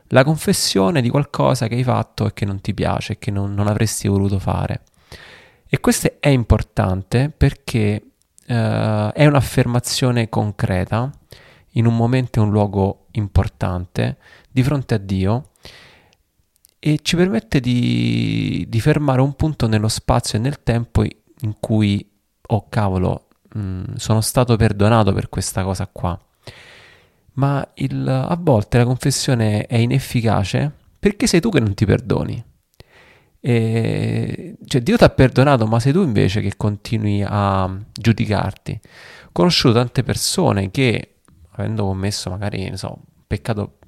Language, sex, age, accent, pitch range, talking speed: Italian, male, 30-49, native, 100-130 Hz, 140 wpm